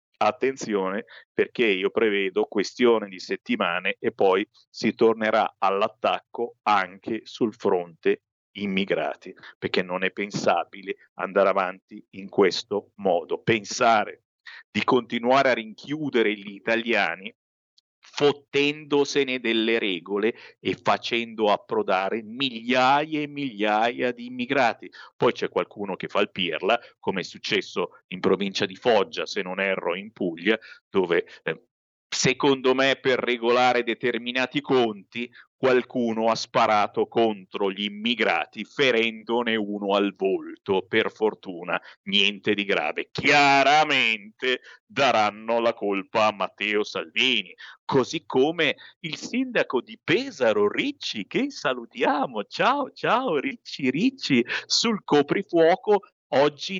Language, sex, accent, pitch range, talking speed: Italian, male, native, 110-165 Hz, 115 wpm